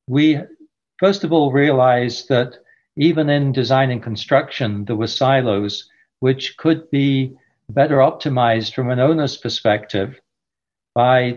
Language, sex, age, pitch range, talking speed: English, male, 60-79, 120-145 Hz, 125 wpm